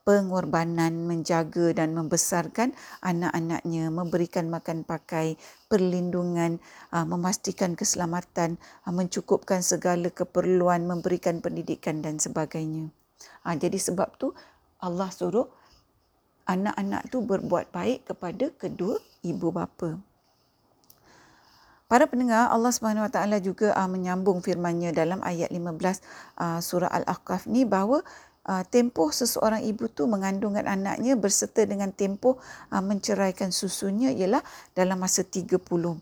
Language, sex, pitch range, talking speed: Malay, female, 175-215 Hz, 100 wpm